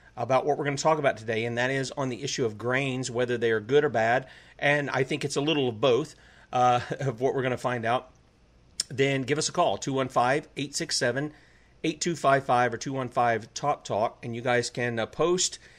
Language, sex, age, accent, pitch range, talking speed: English, male, 40-59, American, 125-155 Hz, 200 wpm